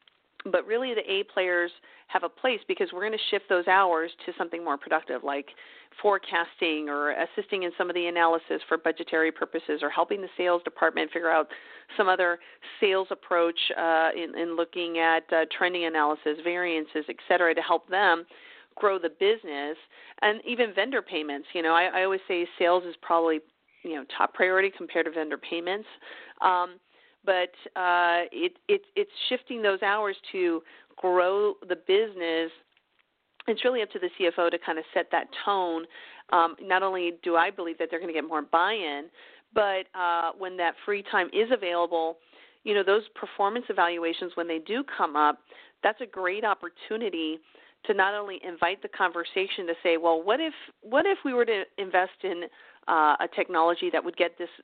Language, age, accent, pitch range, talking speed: English, 40-59, American, 165-205 Hz, 180 wpm